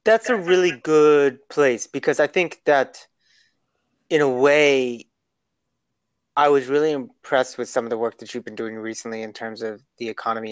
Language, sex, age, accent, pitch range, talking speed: English, male, 30-49, American, 120-150 Hz, 175 wpm